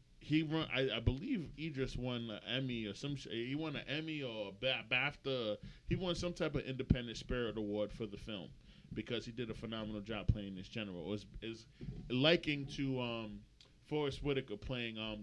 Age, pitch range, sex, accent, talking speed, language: 20-39, 115-145 Hz, male, American, 190 wpm, English